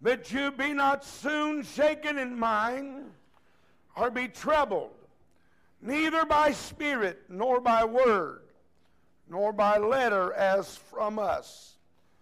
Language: English